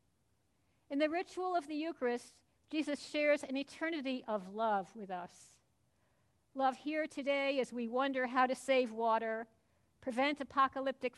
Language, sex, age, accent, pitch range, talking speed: English, female, 50-69, American, 220-275 Hz, 140 wpm